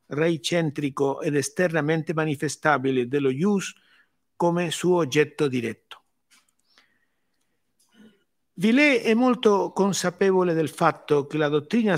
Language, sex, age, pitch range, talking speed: English, male, 50-69, 145-185 Hz, 95 wpm